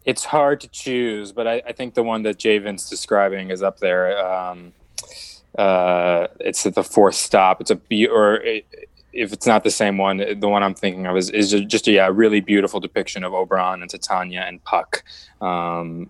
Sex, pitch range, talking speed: male, 95-115 Hz, 200 wpm